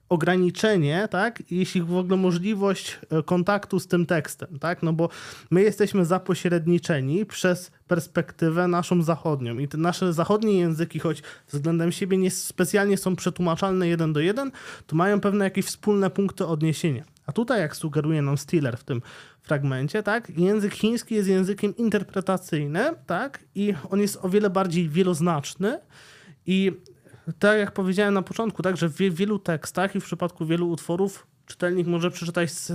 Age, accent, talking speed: 20-39, native, 155 wpm